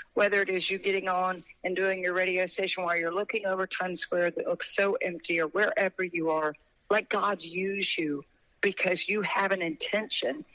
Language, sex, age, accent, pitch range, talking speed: English, female, 50-69, American, 170-195 Hz, 195 wpm